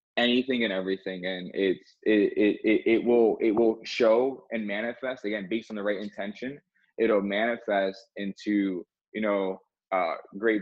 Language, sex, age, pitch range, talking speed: English, male, 20-39, 100-120 Hz, 155 wpm